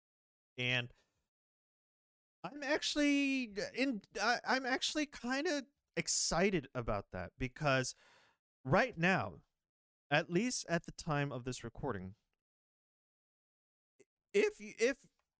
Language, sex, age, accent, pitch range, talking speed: English, male, 30-49, American, 120-160 Hz, 95 wpm